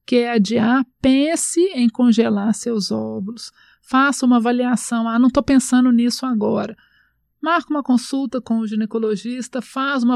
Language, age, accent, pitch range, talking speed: Portuguese, 50-69, Brazilian, 215-250 Hz, 150 wpm